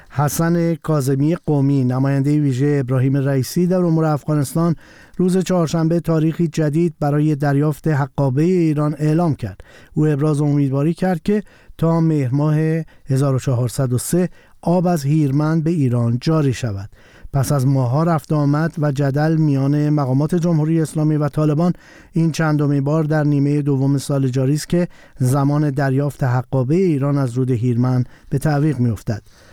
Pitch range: 135-160 Hz